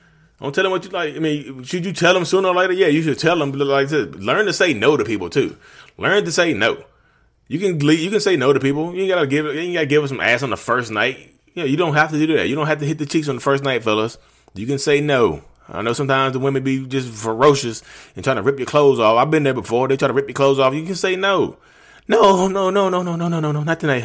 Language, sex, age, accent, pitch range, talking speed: English, male, 30-49, American, 120-160 Hz, 305 wpm